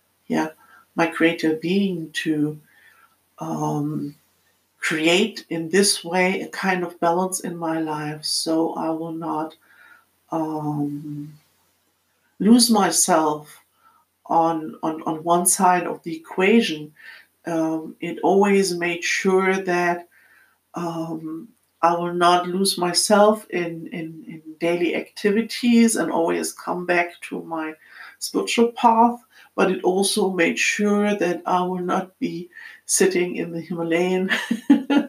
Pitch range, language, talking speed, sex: 165-200 Hz, English, 120 wpm, female